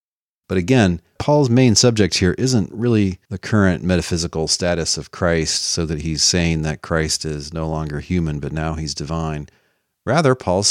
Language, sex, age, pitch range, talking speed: English, male, 40-59, 80-95 Hz, 170 wpm